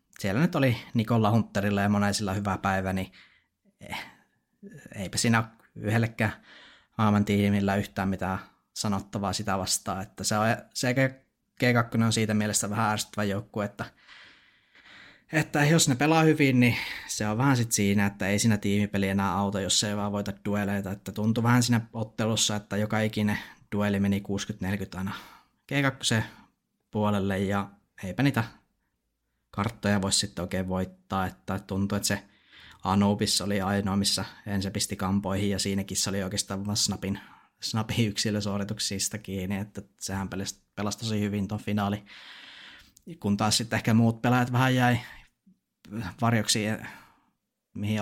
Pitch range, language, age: 100-115 Hz, Finnish, 20-39